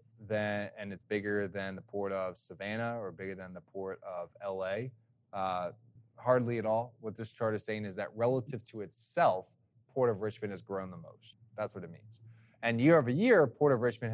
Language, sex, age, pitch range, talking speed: English, male, 20-39, 100-120 Hz, 205 wpm